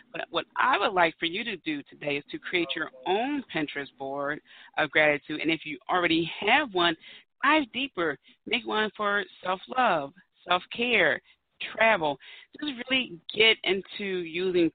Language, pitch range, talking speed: English, 155-205 Hz, 155 wpm